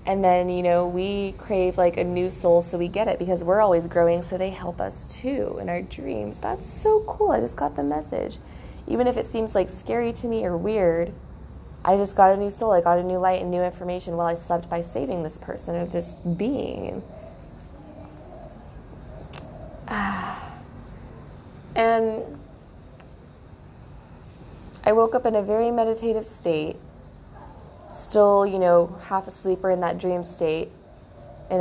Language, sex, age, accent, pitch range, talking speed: English, female, 20-39, American, 170-205 Hz, 165 wpm